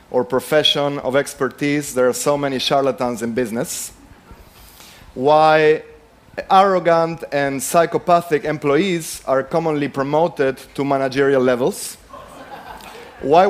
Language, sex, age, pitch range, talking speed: Persian, male, 30-49, 130-175 Hz, 100 wpm